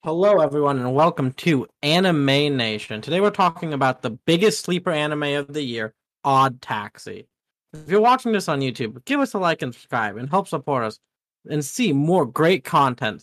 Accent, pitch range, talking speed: American, 130-185 Hz, 185 wpm